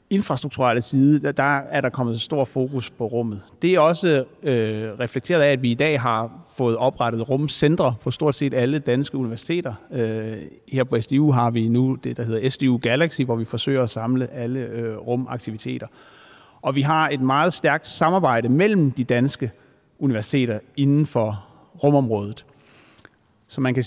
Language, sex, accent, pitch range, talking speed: Danish, male, native, 115-145 Hz, 170 wpm